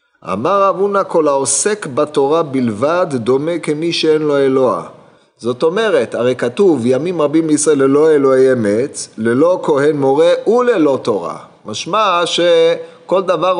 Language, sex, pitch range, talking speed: Hebrew, male, 140-190 Hz, 130 wpm